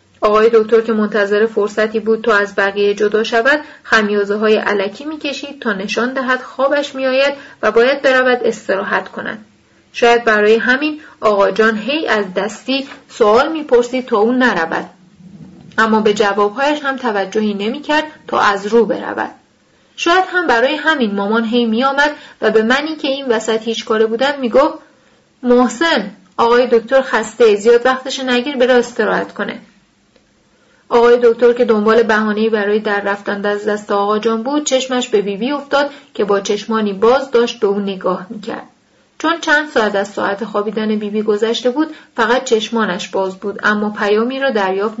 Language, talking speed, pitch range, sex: Persian, 160 wpm, 210-270 Hz, female